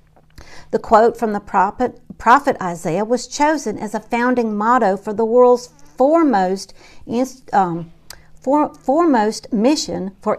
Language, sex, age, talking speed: English, female, 50-69, 120 wpm